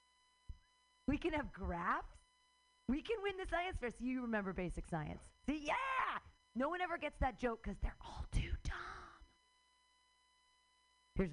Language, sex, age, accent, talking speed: English, female, 40-59, American, 150 wpm